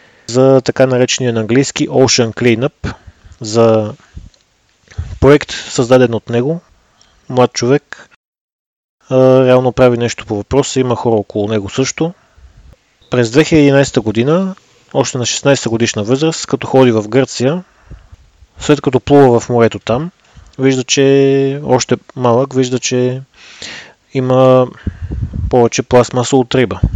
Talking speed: 120 wpm